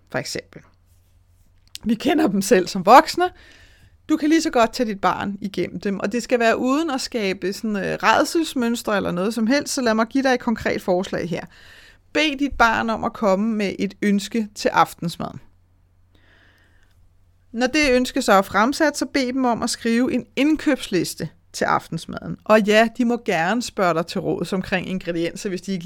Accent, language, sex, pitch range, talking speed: native, Danish, female, 175-240 Hz, 190 wpm